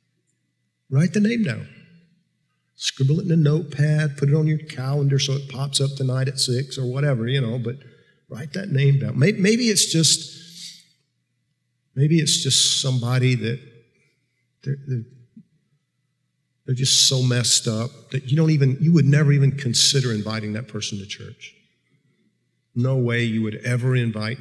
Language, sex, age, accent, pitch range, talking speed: English, male, 50-69, American, 125-165 Hz, 160 wpm